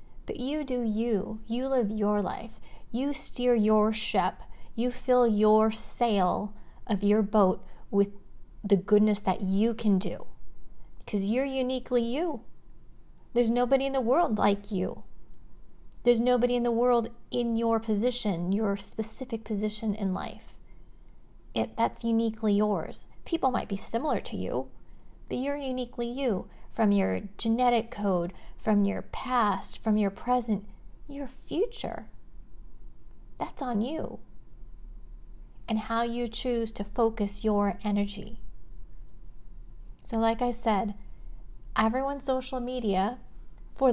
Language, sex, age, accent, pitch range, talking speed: English, female, 40-59, American, 205-245 Hz, 130 wpm